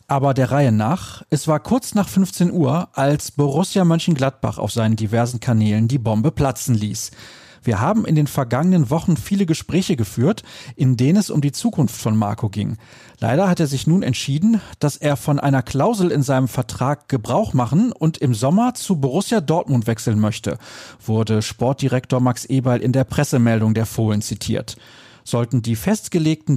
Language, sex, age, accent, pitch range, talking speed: German, male, 40-59, German, 115-160 Hz, 170 wpm